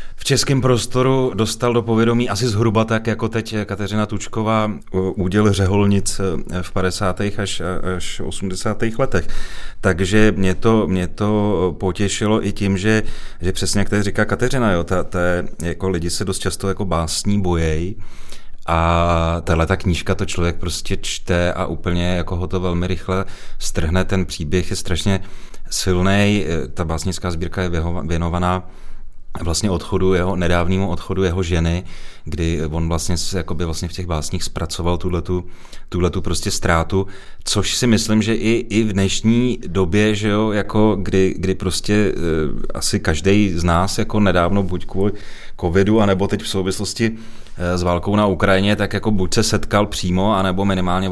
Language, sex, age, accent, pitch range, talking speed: Czech, male, 30-49, native, 85-100 Hz, 155 wpm